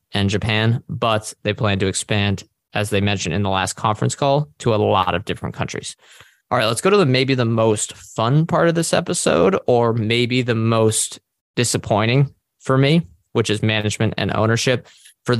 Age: 20-39